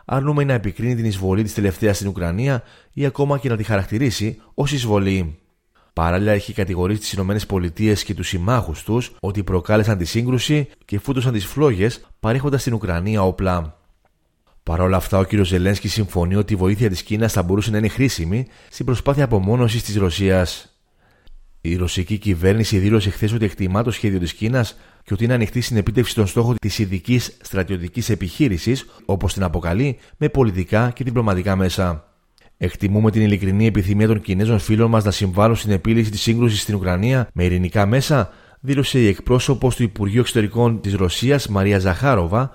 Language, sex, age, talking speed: Greek, male, 30-49, 170 wpm